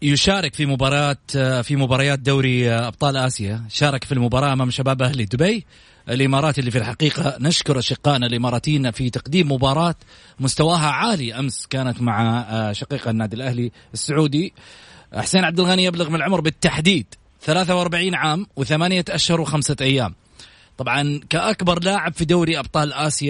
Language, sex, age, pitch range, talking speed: Arabic, male, 30-49, 130-190 Hz, 135 wpm